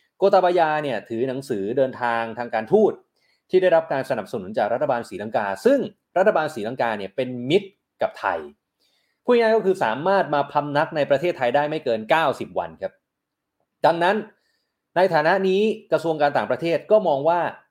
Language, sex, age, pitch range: Thai, male, 30-49, 135-190 Hz